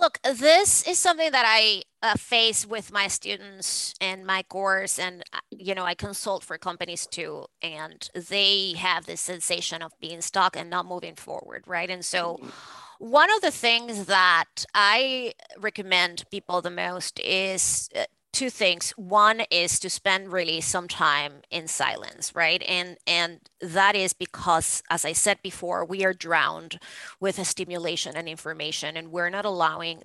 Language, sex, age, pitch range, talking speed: English, female, 30-49, 175-205 Hz, 165 wpm